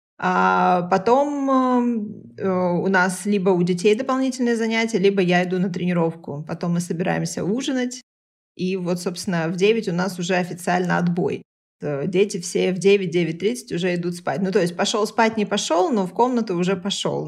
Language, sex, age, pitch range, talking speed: Russian, female, 20-39, 175-210 Hz, 165 wpm